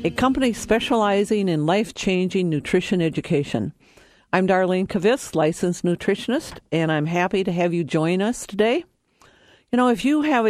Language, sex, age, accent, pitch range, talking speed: English, female, 50-69, American, 180-245 Hz, 150 wpm